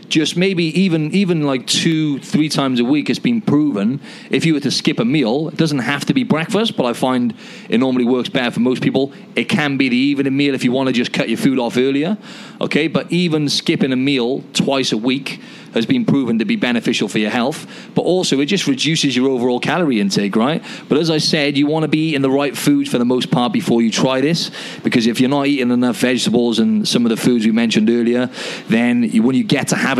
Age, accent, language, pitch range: 30-49, British, English, 125-185 Hz